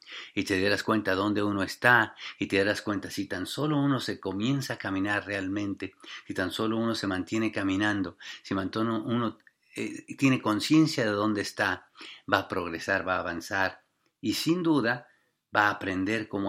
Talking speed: 180 wpm